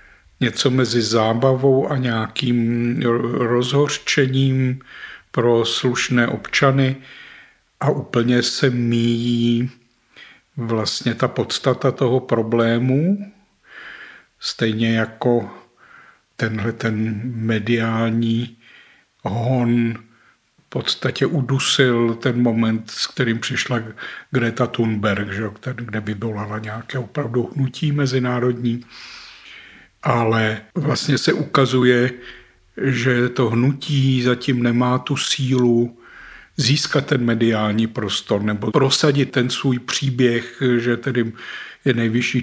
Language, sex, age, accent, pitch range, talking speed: Czech, male, 60-79, native, 115-130 Hz, 95 wpm